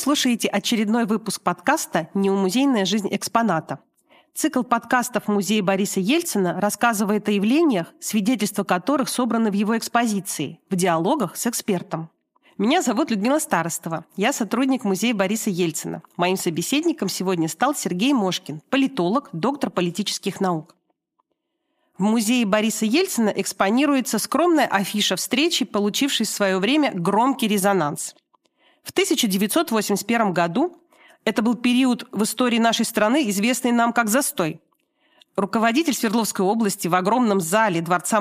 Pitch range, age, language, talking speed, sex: 190-250 Hz, 40-59, Russian, 125 wpm, female